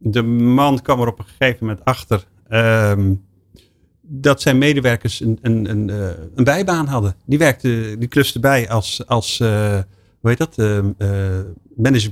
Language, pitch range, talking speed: Dutch, 100-130 Hz, 160 wpm